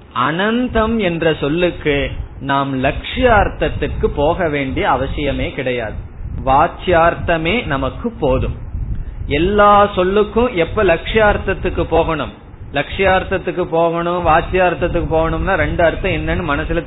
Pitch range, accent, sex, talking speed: 135-190 Hz, native, male, 90 wpm